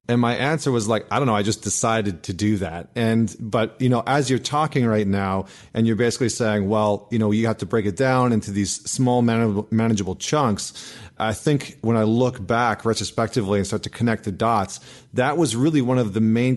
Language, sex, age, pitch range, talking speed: English, male, 30-49, 110-130 Hz, 225 wpm